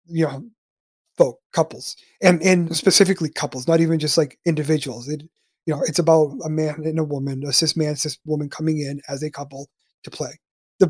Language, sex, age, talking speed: English, male, 30-49, 205 wpm